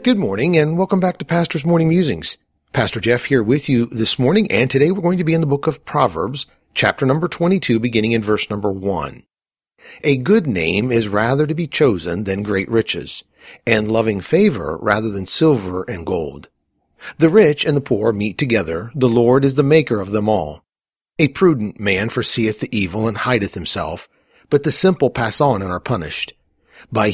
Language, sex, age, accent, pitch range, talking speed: English, male, 50-69, American, 105-150 Hz, 190 wpm